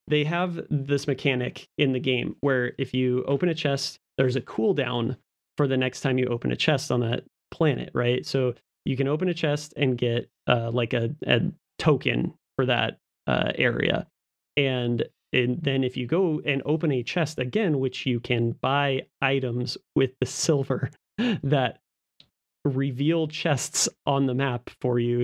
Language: English